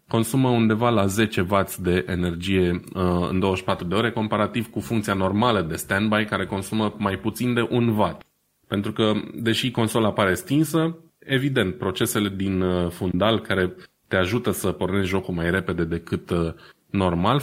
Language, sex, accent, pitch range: Romanian, male, native, 90-115 Hz